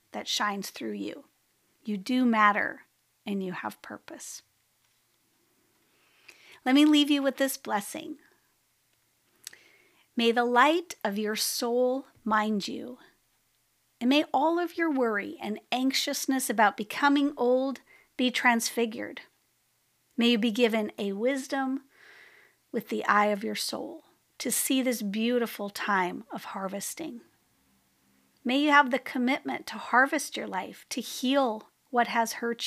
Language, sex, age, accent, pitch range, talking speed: English, female, 40-59, American, 215-270 Hz, 130 wpm